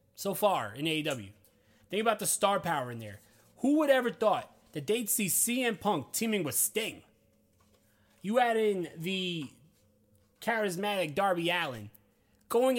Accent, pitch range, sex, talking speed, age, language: American, 130-195 Hz, male, 145 wpm, 20-39, English